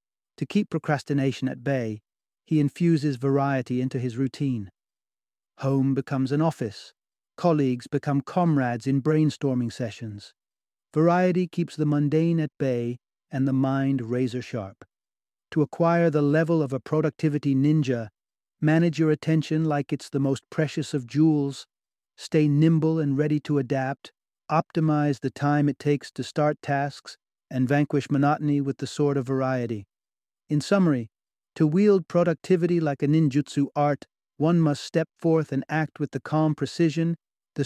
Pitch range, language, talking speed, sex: 130-155 Hz, English, 145 wpm, male